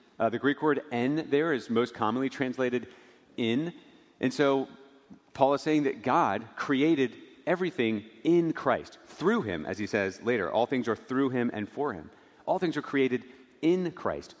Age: 40-59